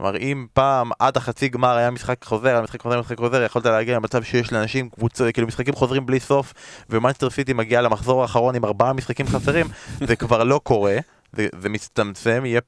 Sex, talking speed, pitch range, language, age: male, 210 wpm, 105-130 Hz, Hebrew, 20-39